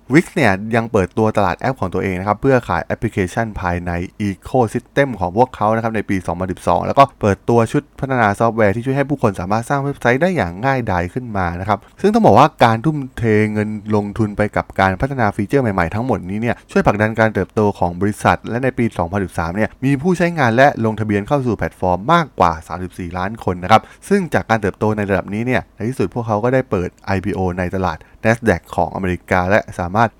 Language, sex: Thai, male